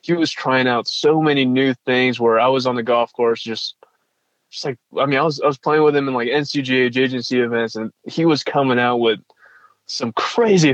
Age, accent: 20-39, American